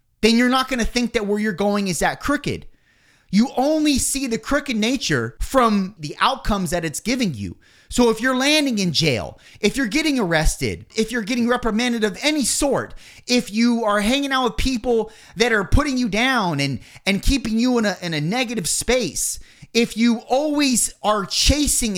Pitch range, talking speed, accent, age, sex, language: 190-250 Hz, 190 wpm, American, 30-49, male, English